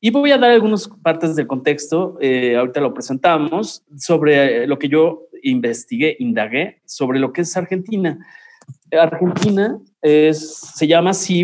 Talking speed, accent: 145 wpm, Mexican